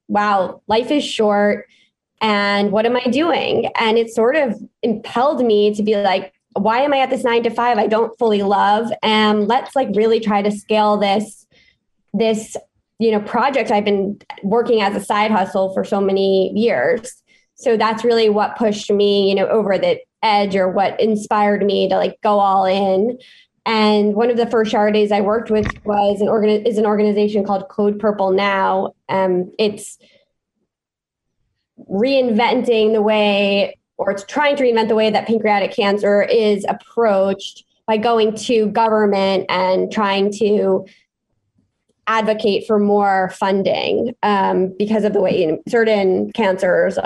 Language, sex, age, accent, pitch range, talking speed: English, female, 20-39, American, 200-225 Hz, 165 wpm